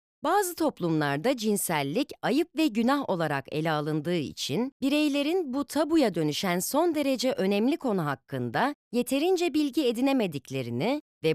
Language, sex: Turkish, female